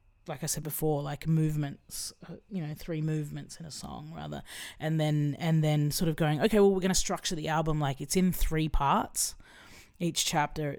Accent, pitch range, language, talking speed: Australian, 145-160 Hz, English, 200 wpm